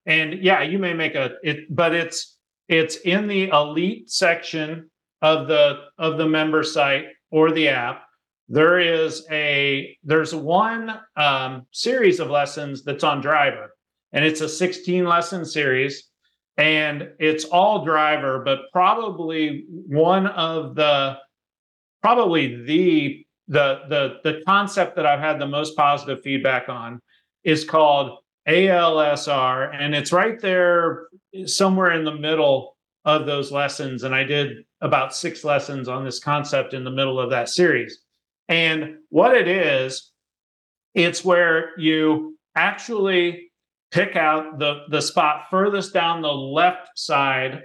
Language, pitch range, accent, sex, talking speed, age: English, 140-170 Hz, American, male, 140 wpm, 40-59